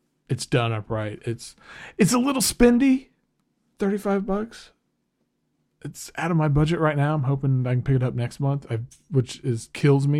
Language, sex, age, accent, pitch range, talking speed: English, male, 40-59, American, 125-165 Hz, 180 wpm